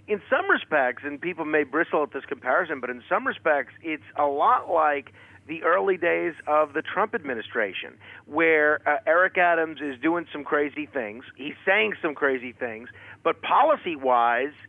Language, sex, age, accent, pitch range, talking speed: English, male, 40-59, American, 145-180 Hz, 170 wpm